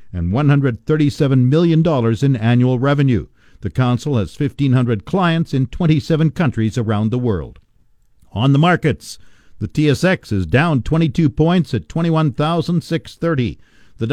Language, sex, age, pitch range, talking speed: English, male, 50-69, 120-160 Hz, 120 wpm